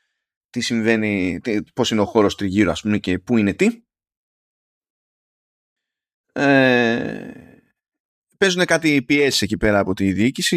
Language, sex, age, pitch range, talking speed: Greek, male, 20-39, 105-170 Hz, 130 wpm